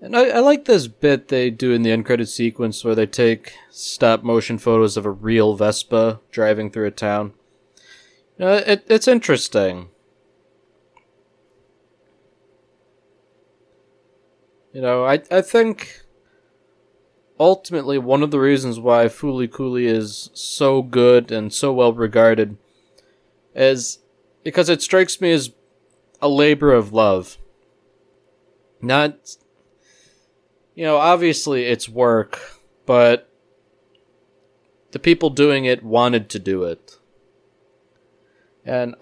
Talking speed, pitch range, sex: 115 wpm, 115-145 Hz, male